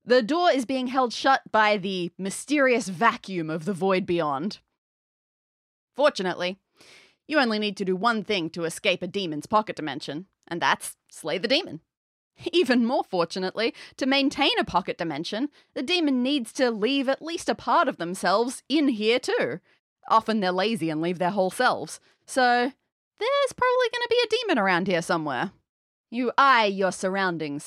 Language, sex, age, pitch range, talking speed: English, female, 30-49, 175-260 Hz, 170 wpm